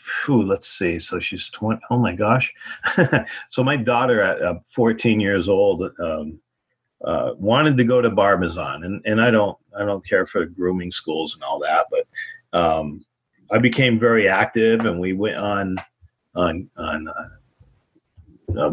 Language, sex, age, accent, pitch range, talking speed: English, male, 40-59, American, 100-125 Hz, 160 wpm